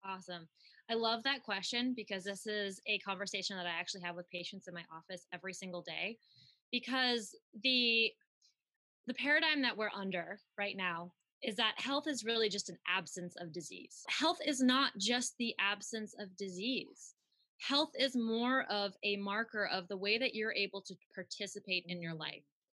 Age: 20-39